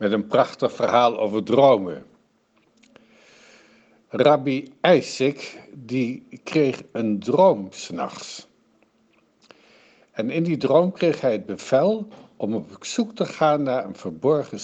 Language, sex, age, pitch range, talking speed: Dutch, male, 60-79, 120-185 Hz, 120 wpm